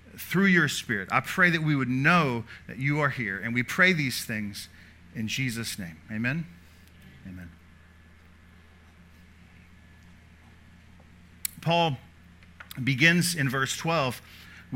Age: 50-69